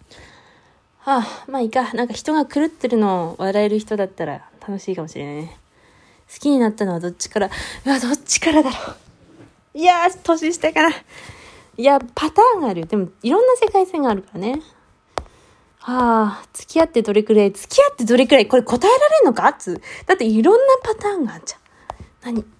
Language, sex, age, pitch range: Japanese, female, 20-39, 215-310 Hz